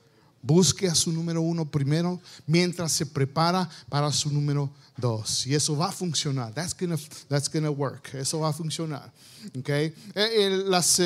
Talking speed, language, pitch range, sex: 165 wpm, Spanish, 145-185 Hz, male